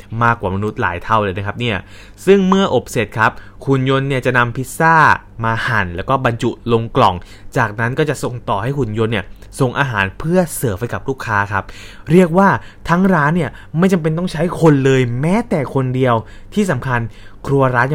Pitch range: 105-145 Hz